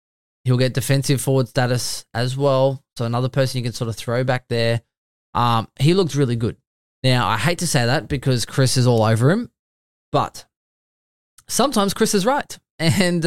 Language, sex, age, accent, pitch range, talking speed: English, male, 20-39, Australian, 115-140 Hz, 180 wpm